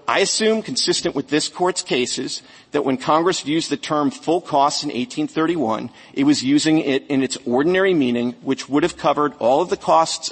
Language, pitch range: English, 130-175 Hz